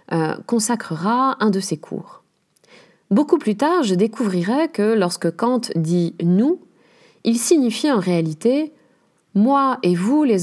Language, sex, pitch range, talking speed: French, female, 170-245 Hz, 130 wpm